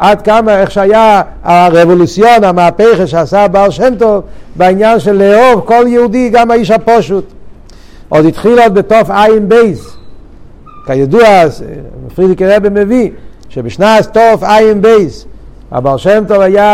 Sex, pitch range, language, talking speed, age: male, 170-210 Hz, Hebrew, 120 wpm, 60-79